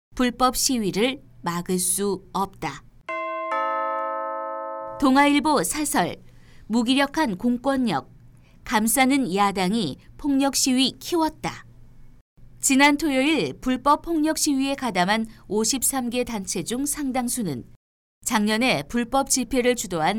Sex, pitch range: female, 195-270 Hz